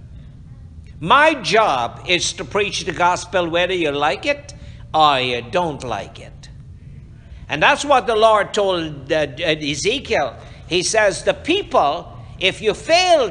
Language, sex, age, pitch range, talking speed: English, male, 60-79, 150-205 Hz, 135 wpm